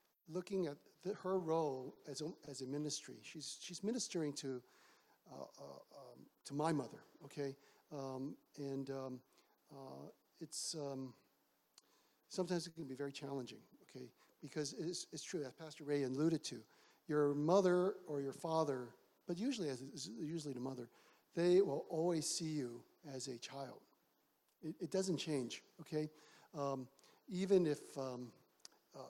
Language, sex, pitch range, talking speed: English, male, 140-165 Hz, 150 wpm